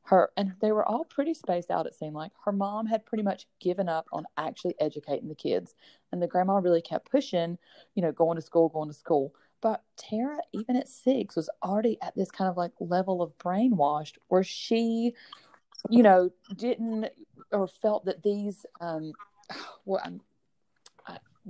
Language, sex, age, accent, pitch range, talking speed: English, female, 30-49, American, 165-210 Hz, 170 wpm